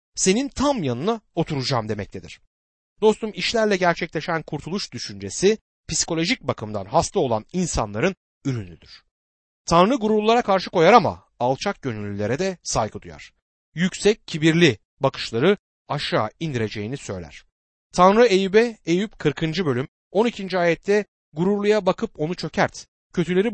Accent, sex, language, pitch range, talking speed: native, male, Turkish, 120-195 Hz, 110 wpm